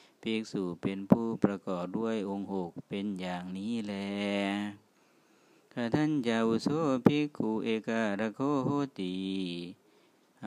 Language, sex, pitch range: Thai, male, 100-115 Hz